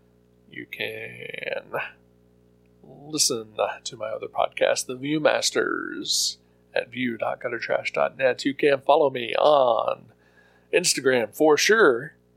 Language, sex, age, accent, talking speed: English, male, 40-59, American, 90 wpm